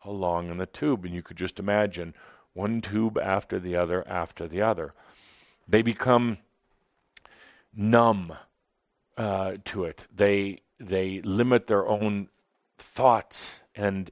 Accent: American